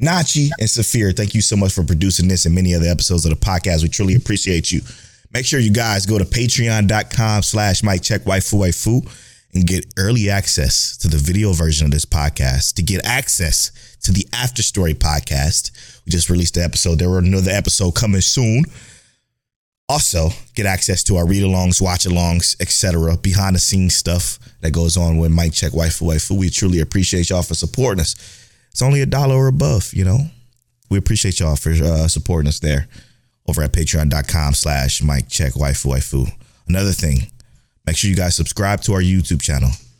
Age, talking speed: 20-39, 180 wpm